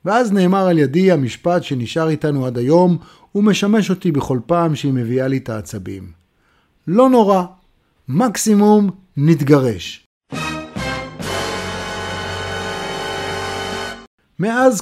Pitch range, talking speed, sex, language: 135-185 Hz, 95 wpm, male, Hebrew